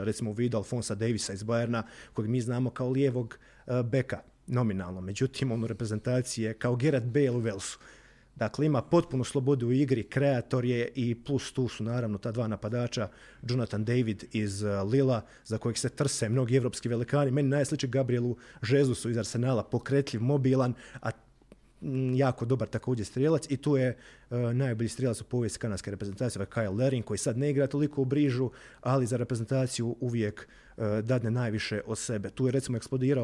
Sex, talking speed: male, 170 wpm